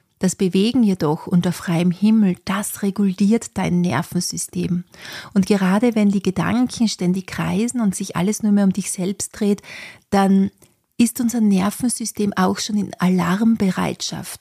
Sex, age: female, 30-49